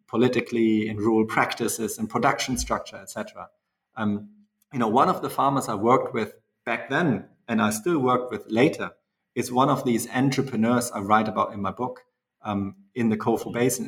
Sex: male